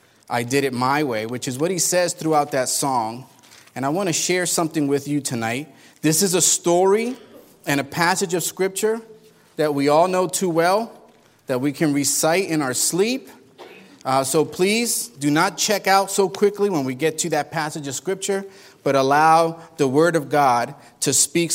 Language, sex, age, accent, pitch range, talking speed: English, male, 30-49, American, 135-170 Hz, 190 wpm